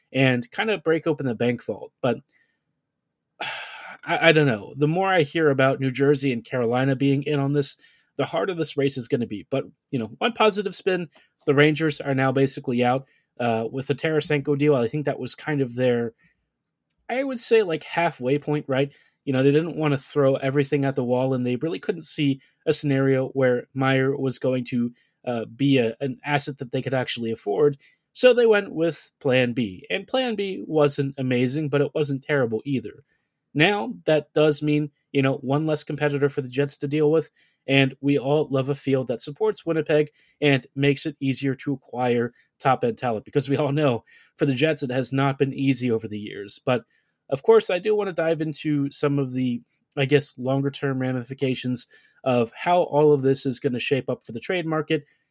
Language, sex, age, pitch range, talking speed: English, male, 30-49, 130-150 Hz, 210 wpm